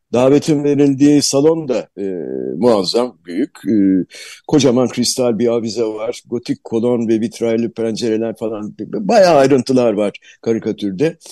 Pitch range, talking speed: 115-145 Hz, 120 wpm